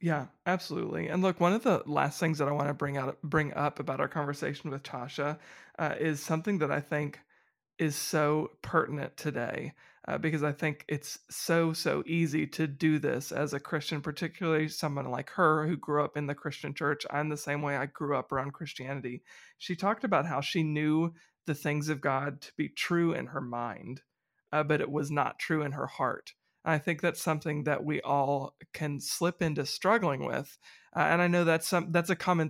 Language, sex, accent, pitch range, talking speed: English, male, American, 145-160 Hz, 205 wpm